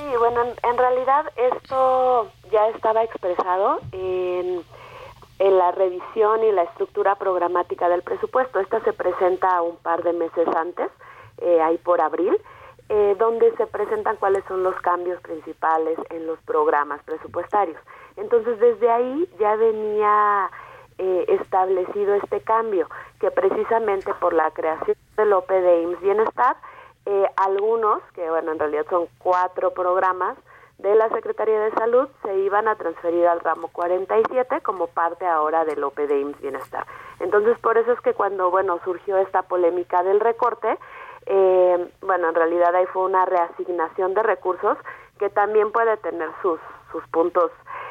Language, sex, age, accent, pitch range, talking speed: Spanish, female, 30-49, Mexican, 175-230 Hz, 150 wpm